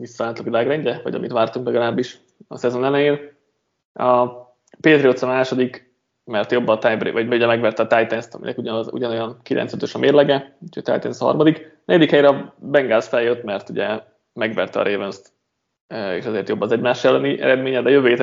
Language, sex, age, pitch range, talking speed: Hungarian, male, 20-39, 115-140 Hz, 165 wpm